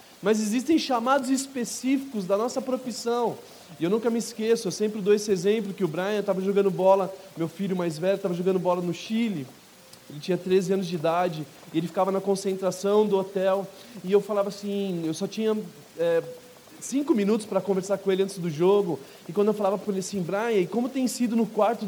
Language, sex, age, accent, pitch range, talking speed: Portuguese, male, 20-39, Brazilian, 185-225 Hz, 210 wpm